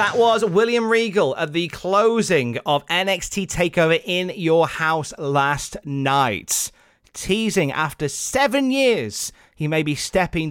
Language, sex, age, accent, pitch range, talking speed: English, male, 30-49, British, 125-165 Hz, 130 wpm